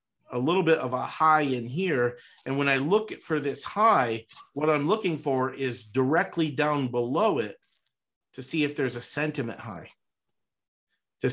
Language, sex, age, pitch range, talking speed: English, male, 50-69, 125-165 Hz, 170 wpm